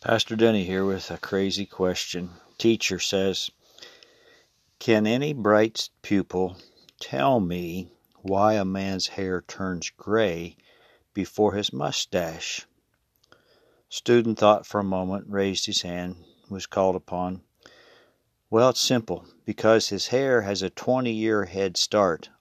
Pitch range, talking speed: 90-105 Hz, 125 wpm